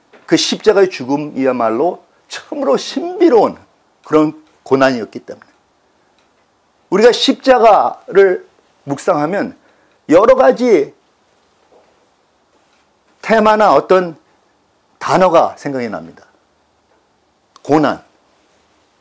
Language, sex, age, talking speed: English, male, 50-69, 60 wpm